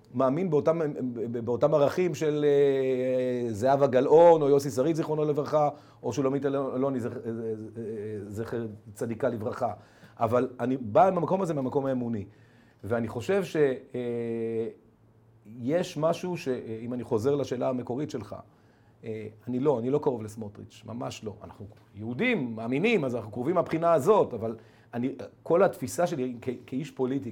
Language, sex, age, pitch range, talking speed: Hebrew, male, 40-59, 115-145 Hz, 125 wpm